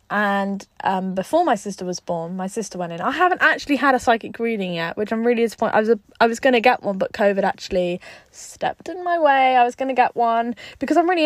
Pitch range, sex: 190-240 Hz, female